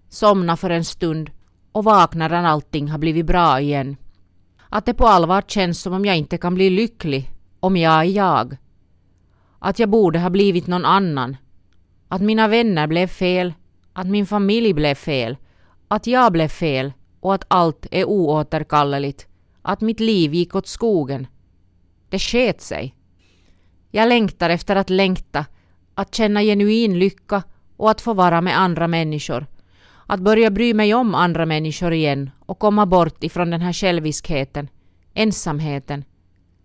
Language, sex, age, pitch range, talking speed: Finnish, female, 30-49, 135-195 Hz, 155 wpm